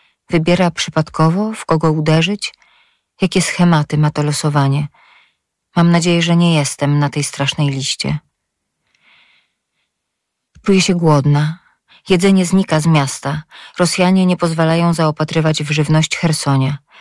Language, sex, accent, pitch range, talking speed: Polish, female, native, 150-180 Hz, 115 wpm